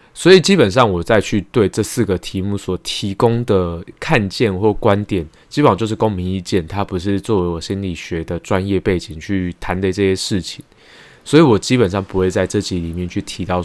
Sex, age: male, 20-39